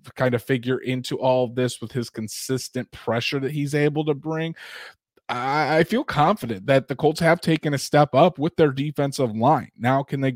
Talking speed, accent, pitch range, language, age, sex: 190 wpm, American, 125-150 Hz, English, 20-39, male